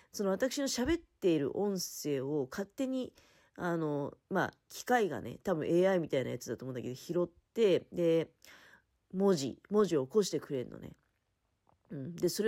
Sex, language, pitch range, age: female, Japanese, 165-270 Hz, 40-59